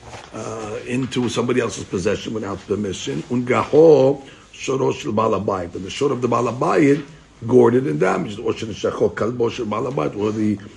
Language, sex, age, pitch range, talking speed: English, male, 60-79, 105-130 Hz, 135 wpm